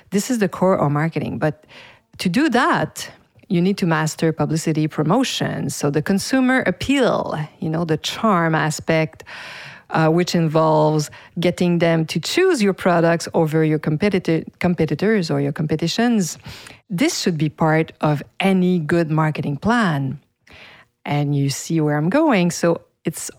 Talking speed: 145 wpm